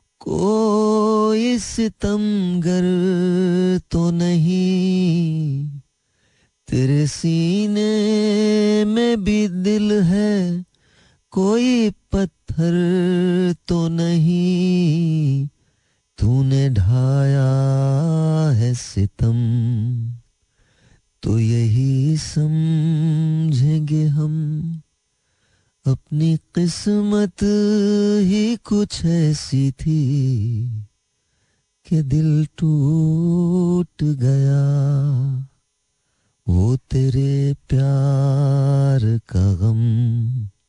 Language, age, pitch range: Hindi, 30-49, 135-180 Hz